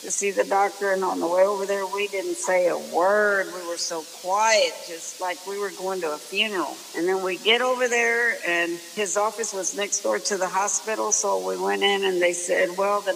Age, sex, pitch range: 60-79, female, 180-210 Hz